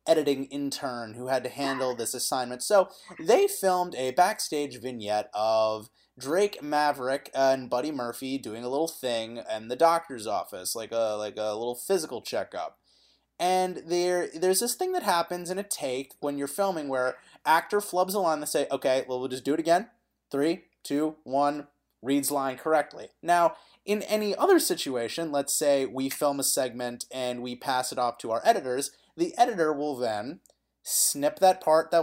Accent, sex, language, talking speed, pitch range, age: American, male, English, 180 wpm, 125-180 Hz, 30-49